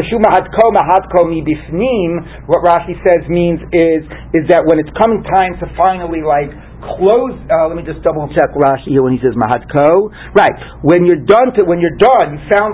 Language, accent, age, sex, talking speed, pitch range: English, American, 40-59, male, 175 wpm, 140-185 Hz